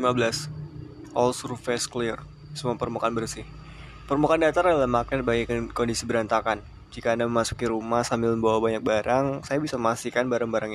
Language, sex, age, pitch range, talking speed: Indonesian, male, 20-39, 115-135 Hz, 145 wpm